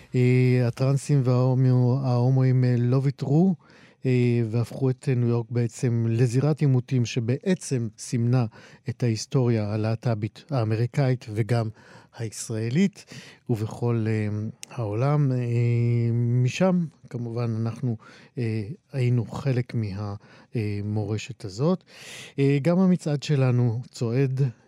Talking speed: 80 wpm